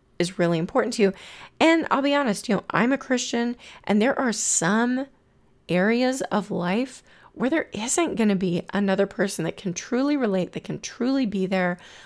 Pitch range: 185-230 Hz